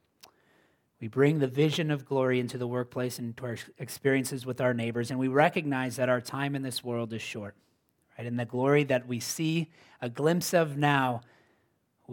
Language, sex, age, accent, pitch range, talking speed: English, male, 30-49, American, 115-135 Hz, 195 wpm